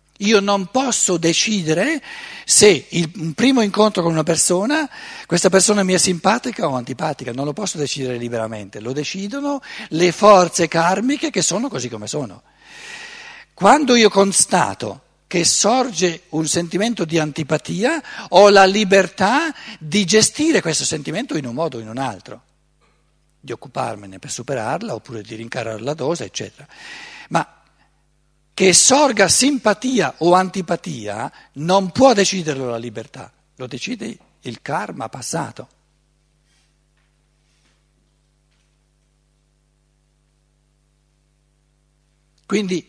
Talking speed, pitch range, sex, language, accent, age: 115 wpm, 150-205 Hz, male, Italian, native, 60-79